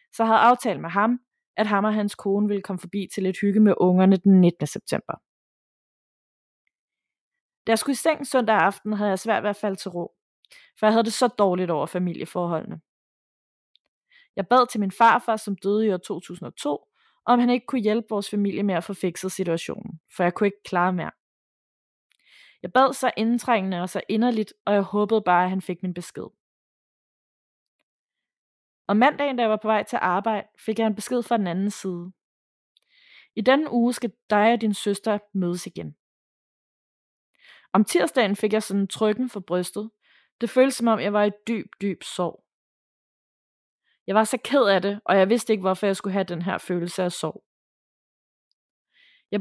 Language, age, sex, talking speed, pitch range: Danish, 20-39, female, 185 wpm, 190-230 Hz